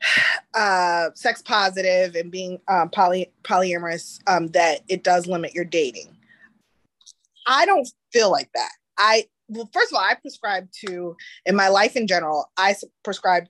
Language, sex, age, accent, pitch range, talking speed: English, female, 20-39, American, 180-245 Hz, 155 wpm